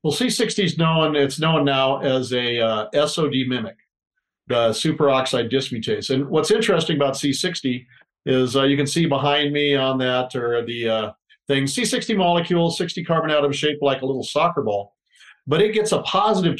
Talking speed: 175 wpm